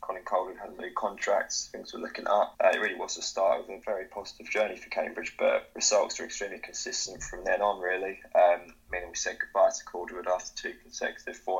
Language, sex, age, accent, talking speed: English, male, 20-39, British, 220 wpm